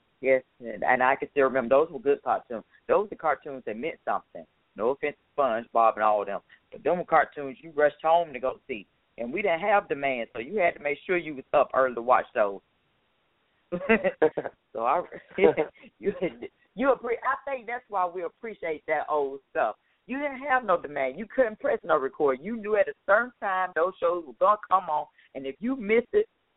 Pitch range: 130-195 Hz